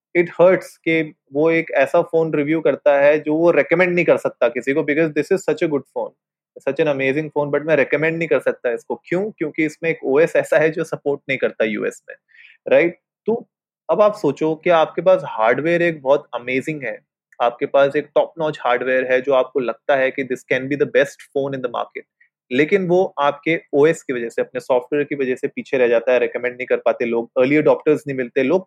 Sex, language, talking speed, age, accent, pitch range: male, Hindi, 225 wpm, 30-49, native, 130-165 Hz